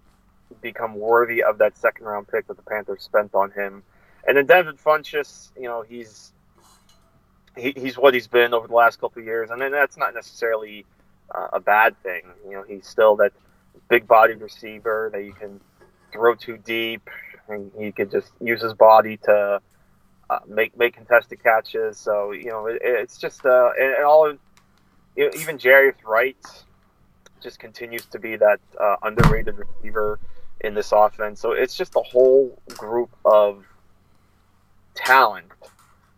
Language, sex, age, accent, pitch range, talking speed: English, male, 20-39, American, 100-120 Hz, 165 wpm